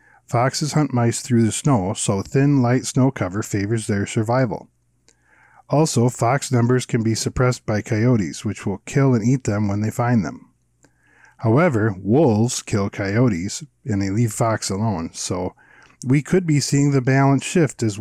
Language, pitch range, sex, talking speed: English, 105-135 Hz, male, 165 wpm